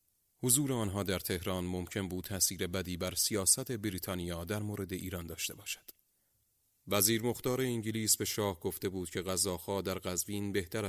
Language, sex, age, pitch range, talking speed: Persian, male, 30-49, 90-105 Hz, 155 wpm